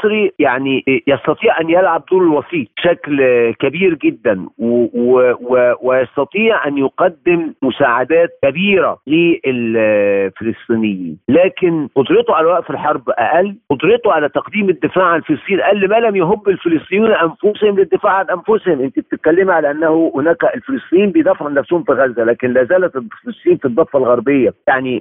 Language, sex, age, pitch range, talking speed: Arabic, male, 50-69, 150-235 Hz, 130 wpm